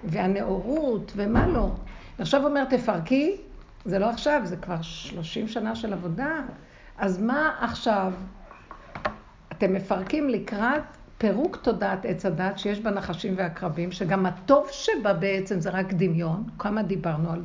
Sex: female